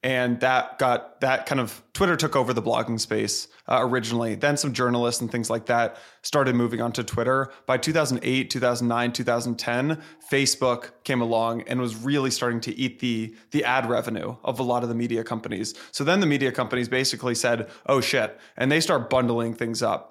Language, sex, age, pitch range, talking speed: English, male, 20-39, 115-130 Hz, 190 wpm